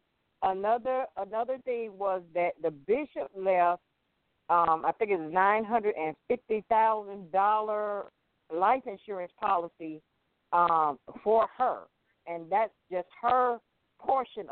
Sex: female